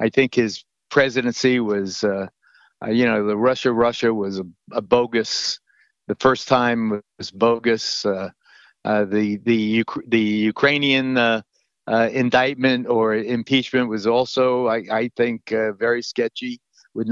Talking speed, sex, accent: 140 wpm, male, American